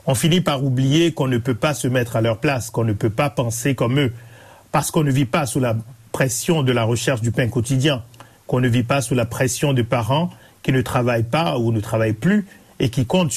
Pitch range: 120-155 Hz